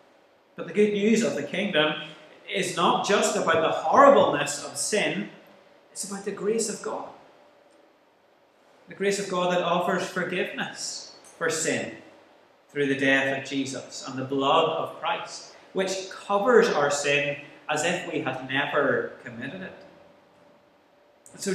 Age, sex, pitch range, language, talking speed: 30-49, male, 145-195 Hz, English, 145 wpm